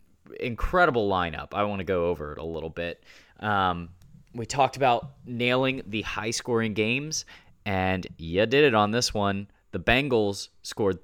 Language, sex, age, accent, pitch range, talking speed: English, male, 20-39, American, 90-120 Hz, 160 wpm